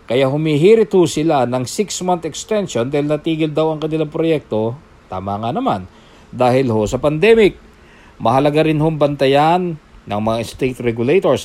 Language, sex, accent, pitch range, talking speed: English, male, Filipino, 120-150 Hz, 135 wpm